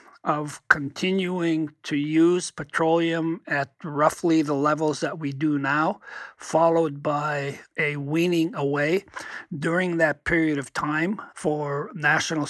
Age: 60-79